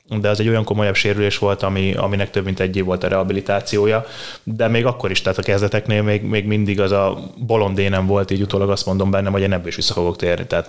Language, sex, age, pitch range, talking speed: Hungarian, male, 20-39, 95-110 Hz, 240 wpm